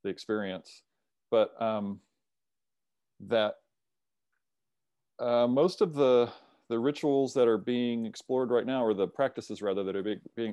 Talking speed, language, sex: 135 wpm, English, male